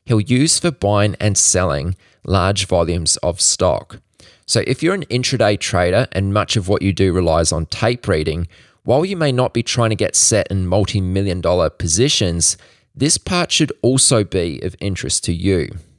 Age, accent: 20-39, Australian